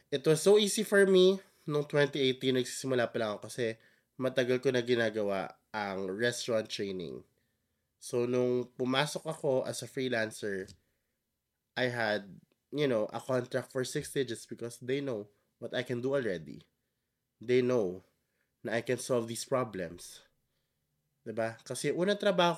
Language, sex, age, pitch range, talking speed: Filipino, male, 20-39, 125-160 Hz, 145 wpm